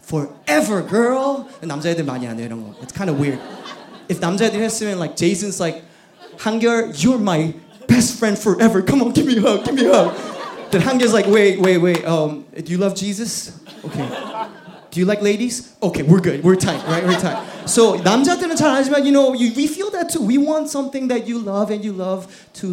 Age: 20-39